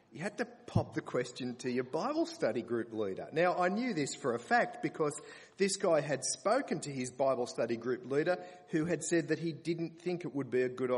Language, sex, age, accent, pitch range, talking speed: English, male, 40-59, Australian, 120-160 Hz, 230 wpm